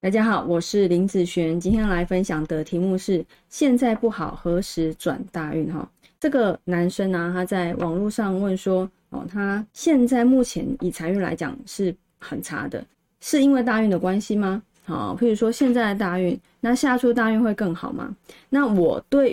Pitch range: 180-245 Hz